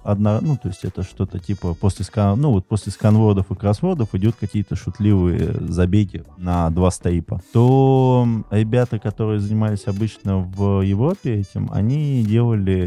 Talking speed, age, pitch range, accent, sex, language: 130 wpm, 20-39, 95-110 Hz, native, male, Russian